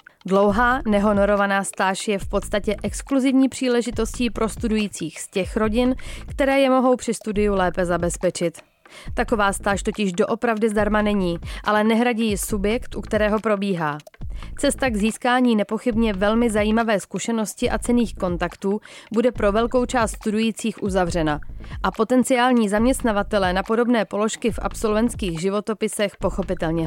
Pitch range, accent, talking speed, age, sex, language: 195-235 Hz, native, 130 wpm, 30-49, female, Czech